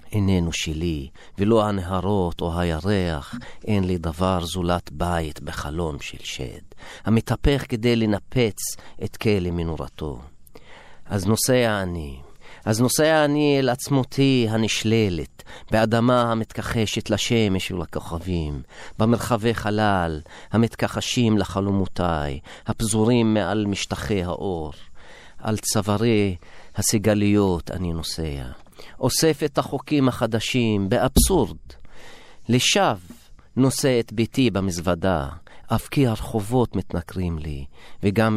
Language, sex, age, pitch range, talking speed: Hebrew, male, 40-59, 85-115 Hz, 95 wpm